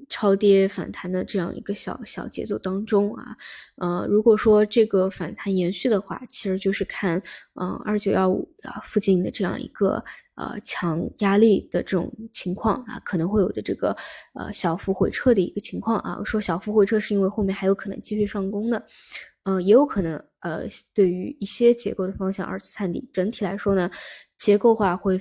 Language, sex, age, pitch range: Chinese, female, 20-39, 185-210 Hz